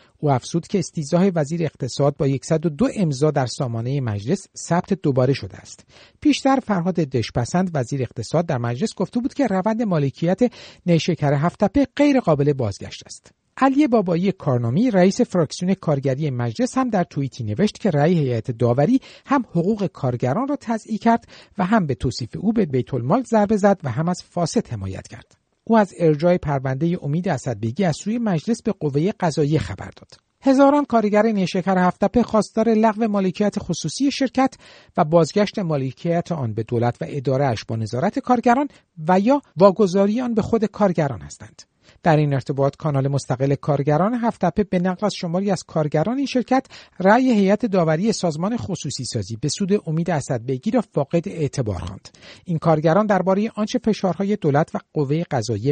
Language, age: Persian, 50-69